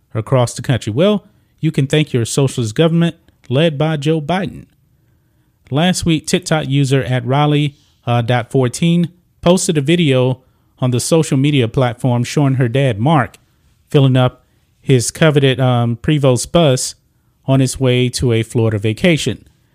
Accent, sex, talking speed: American, male, 150 wpm